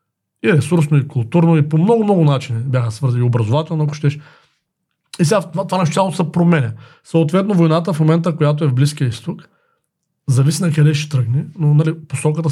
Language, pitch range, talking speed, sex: Bulgarian, 135-170 Hz, 185 wpm, male